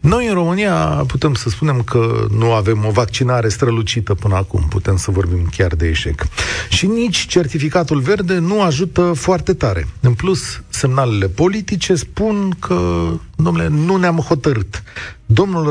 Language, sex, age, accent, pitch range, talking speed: Romanian, male, 40-59, native, 105-155 Hz, 150 wpm